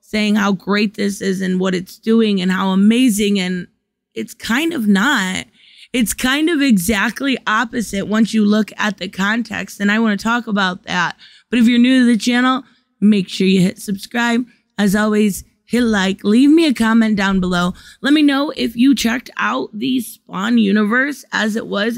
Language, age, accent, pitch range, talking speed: English, 20-39, American, 205-245 Hz, 190 wpm